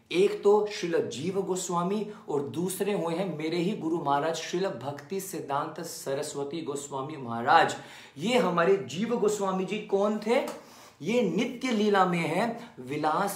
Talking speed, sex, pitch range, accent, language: 145 wpm, male, 155-195 Hz, native, Hindi